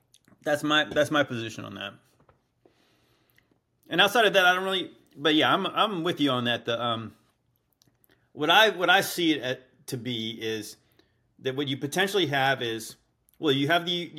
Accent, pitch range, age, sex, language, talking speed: American, 120-155 Hz, 30-49, male, English, 180 wpm